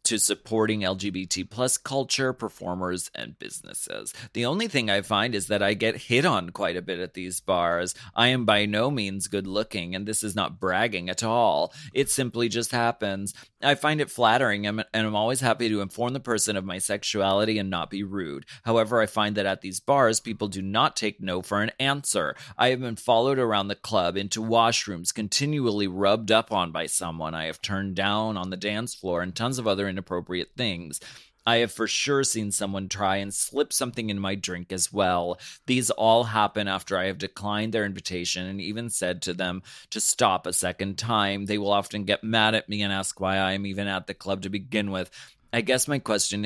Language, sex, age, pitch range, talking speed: English, male, 30-49, 95-110 Hz, 210 wpm